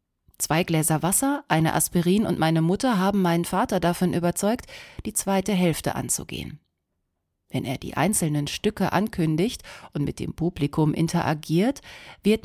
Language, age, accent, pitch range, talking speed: German, 30-49, German, 155-210 Hz, 140 wpm